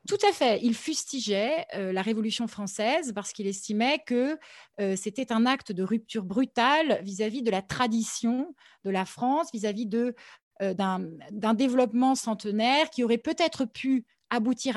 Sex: female